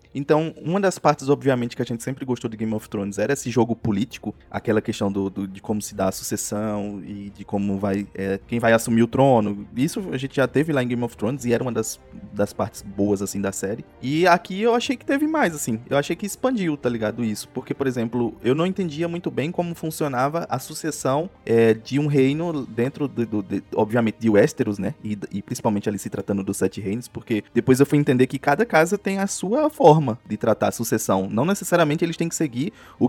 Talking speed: 225 wpm